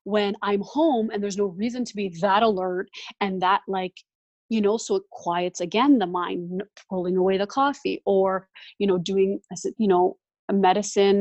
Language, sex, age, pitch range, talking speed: English, female, 30-49, 180-205 Hz, 180 wpm